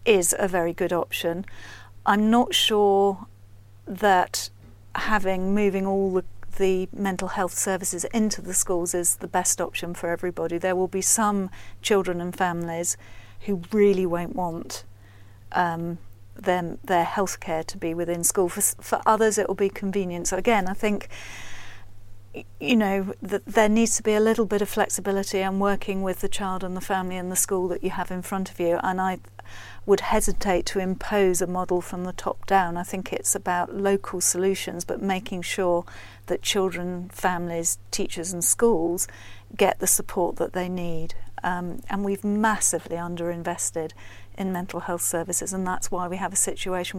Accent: British